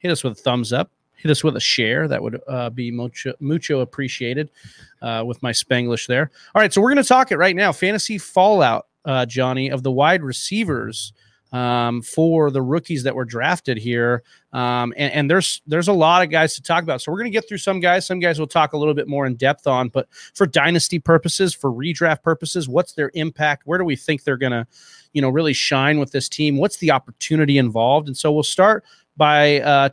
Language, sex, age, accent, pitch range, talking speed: English, male, 30-49, American, 130-165 Hz, 230 wpm